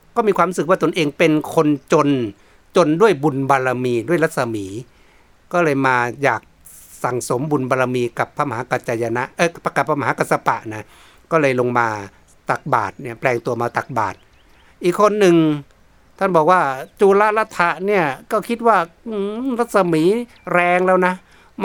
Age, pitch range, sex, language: 60-79, 145-185 Hz, male, Thai